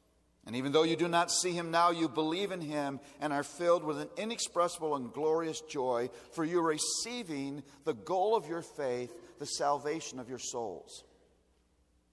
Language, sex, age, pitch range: English, male, 50-69, 145-200 Hz